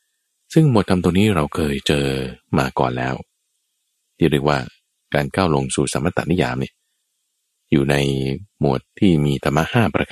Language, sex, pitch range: Thai, male, 70-90 Hz